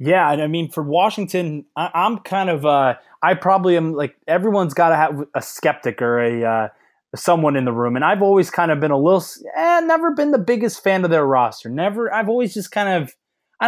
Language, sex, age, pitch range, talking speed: English, male, 20-39, 135-170 Hz, 225 wpm